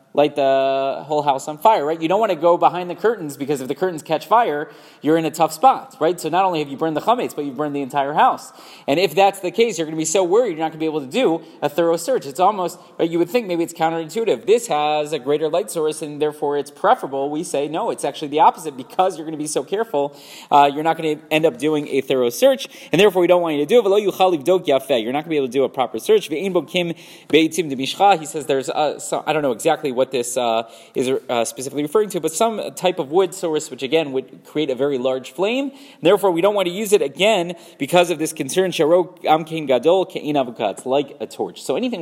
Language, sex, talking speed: English, male, 250 wpm